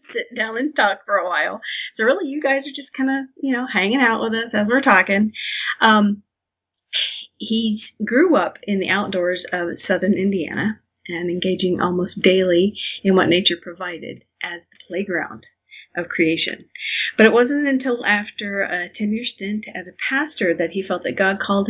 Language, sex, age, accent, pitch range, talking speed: English, female, 40-59, American, 180-220 Hz, 175 wpm